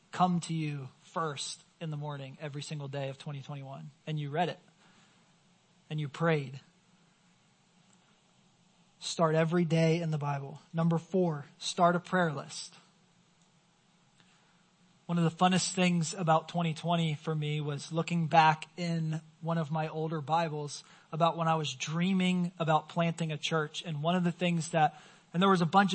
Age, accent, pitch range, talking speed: 20-39, American, 160-180 Hz, 160 wpm